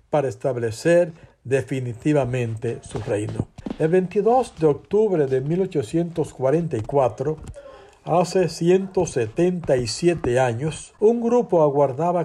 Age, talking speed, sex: 60-79, 85 wpm, male